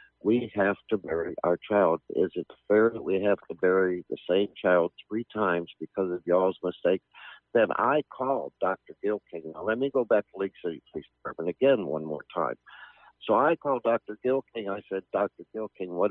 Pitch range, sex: 95-120 Hz, male